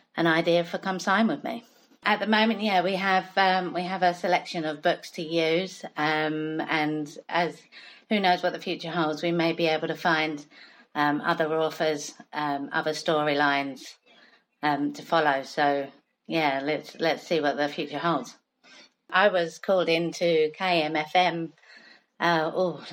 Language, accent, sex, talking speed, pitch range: English, British, female, 155 wpm, 145-170 Hz